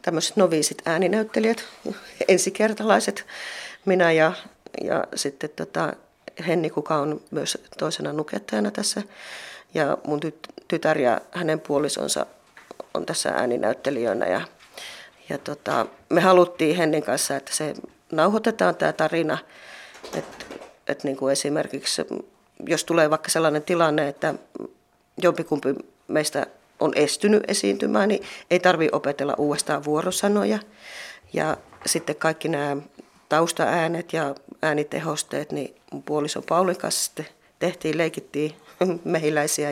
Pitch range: 150-175 Hz